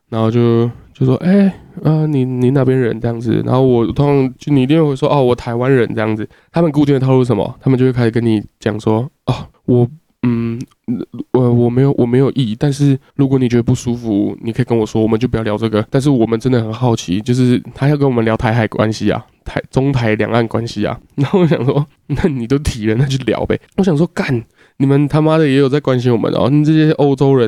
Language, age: English, 20-39